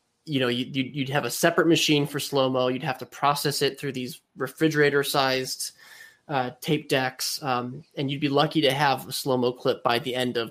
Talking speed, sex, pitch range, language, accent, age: 190 wpm, male, 125-150 Hz, English, American, 20-39